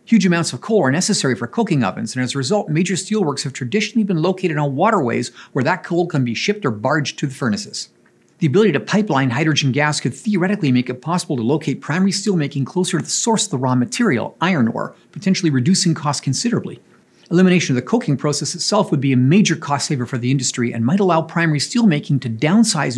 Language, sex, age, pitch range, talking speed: English, male, 40-59, 130-190 Hz, 215 wpm